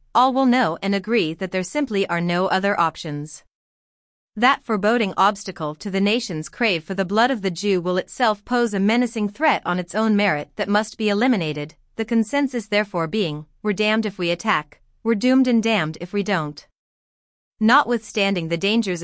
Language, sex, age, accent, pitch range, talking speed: English, female, 30-49, American, 170-225 Hz, 185 wpm